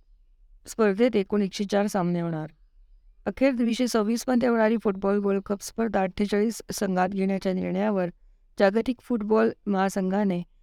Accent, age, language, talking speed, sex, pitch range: native, 20-39, Marathi, 120 wpm, female, 180-235 Hz